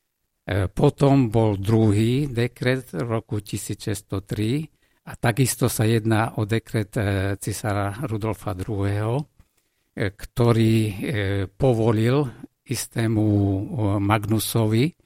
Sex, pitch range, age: male, 105-120 Hz, 50-69